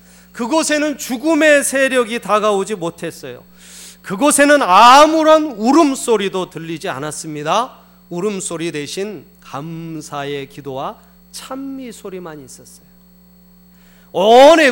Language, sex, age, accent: Korean, male, 30-49, native